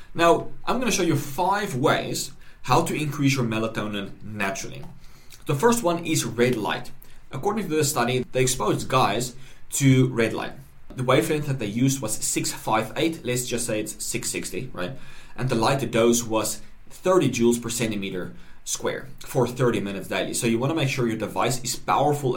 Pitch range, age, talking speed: 115-145 Hz, 20-39, 175 wpm